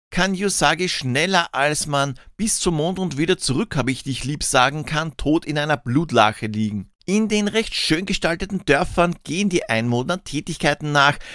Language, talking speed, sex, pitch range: German, 175 wpm, male, 125-175 Hz